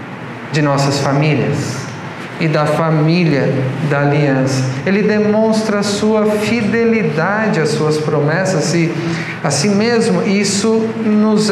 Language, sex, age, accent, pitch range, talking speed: Portuguese, male, 50-69, Brazilian, 160-220 Hz, 110 wpm